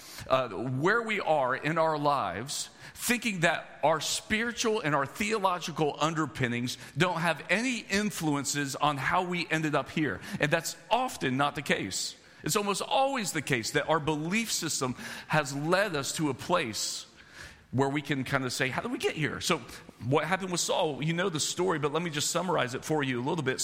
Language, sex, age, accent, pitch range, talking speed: English, male, 40-59, American, 125-165 Hz, 195 wpm